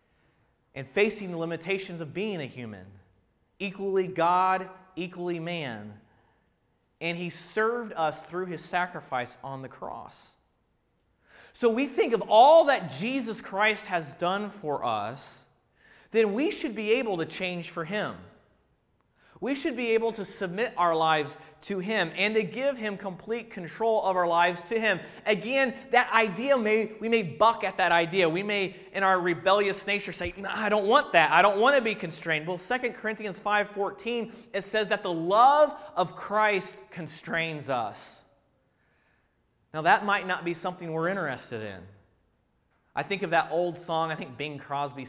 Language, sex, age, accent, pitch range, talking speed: English, male, 30-49, American, 155-210 Hz, 165 wpm